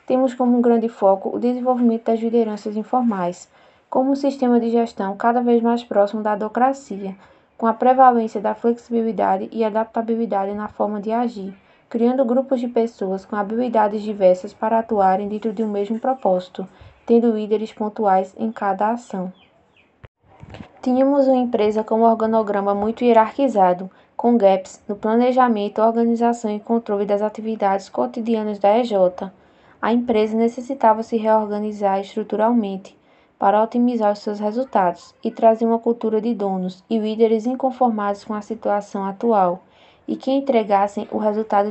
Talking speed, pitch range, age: 145 wpm, 205-235 Hz, 20-39